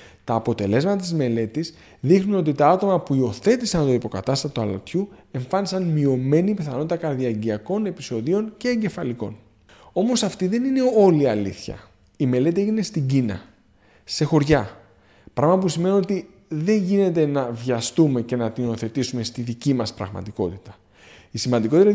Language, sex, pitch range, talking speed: Greek, male, 125-195 Hz, 140 wpm